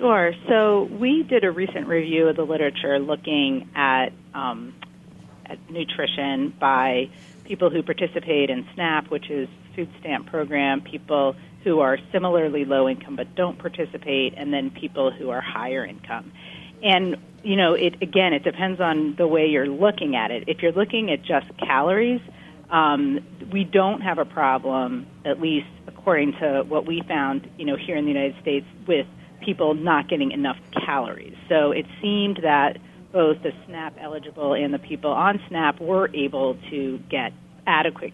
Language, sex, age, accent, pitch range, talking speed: English, female, 40-59, American, 140-185 Hz, 165 wpm